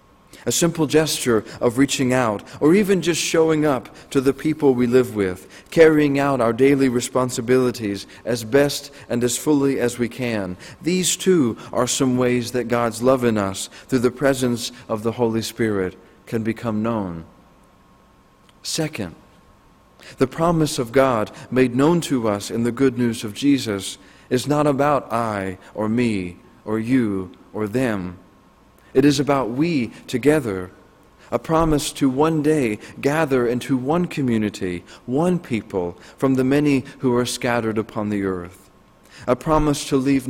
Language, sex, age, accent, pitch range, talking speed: English, male, 40-59, American, 105-140 Hz, 155 wpm